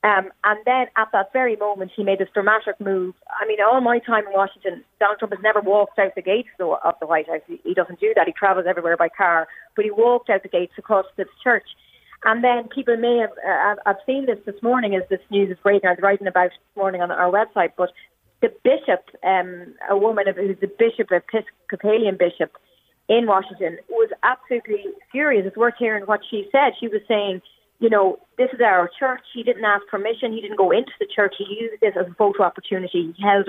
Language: English